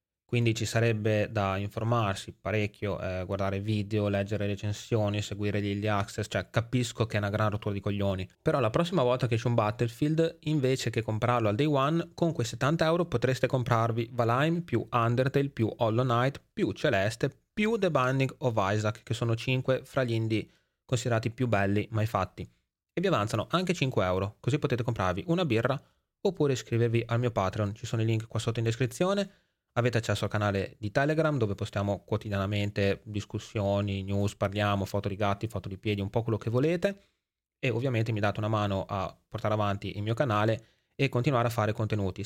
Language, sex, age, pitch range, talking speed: Italian, male, 20-39, 100-125 Hz, 185 wpm